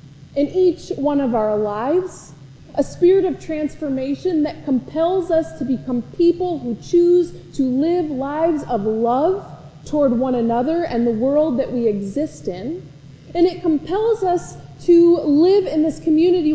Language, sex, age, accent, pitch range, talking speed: English, female, 20-39, American, 235-320 Hz, 150 wpm